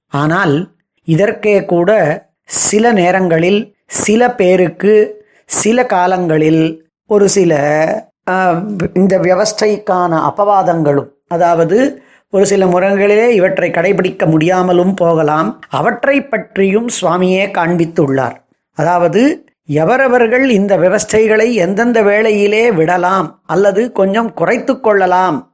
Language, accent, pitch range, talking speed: Tamil, native, 175-220 Hz, 85 wpm